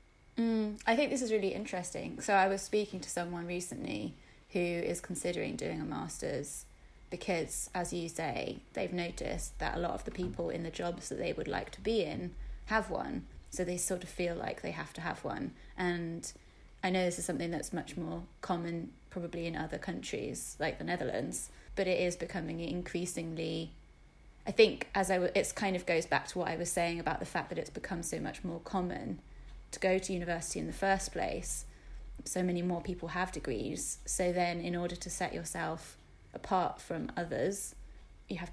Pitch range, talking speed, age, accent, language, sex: 170-185 Hz, 200 wpm, 20-39, British, English, female